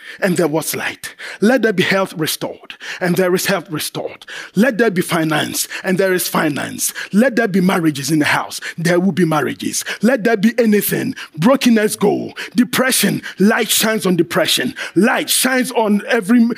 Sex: male